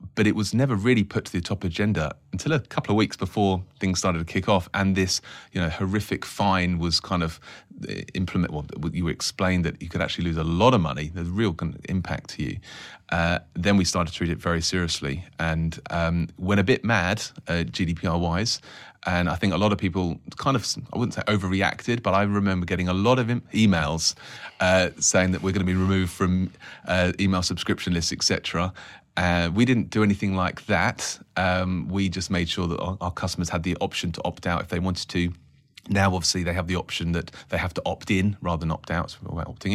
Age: 30-49